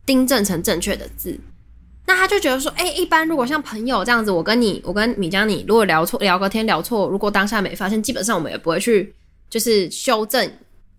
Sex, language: female, Chinese